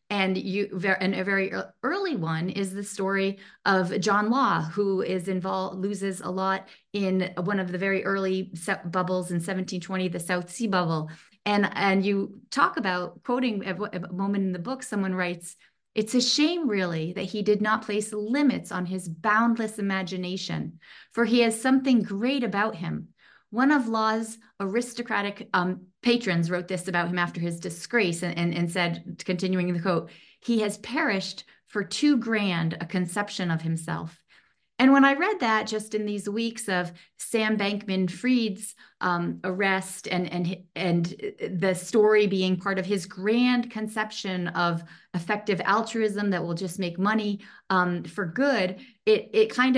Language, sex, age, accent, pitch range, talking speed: English, female, 30-49, American, 185-220 Hz, 165 wpm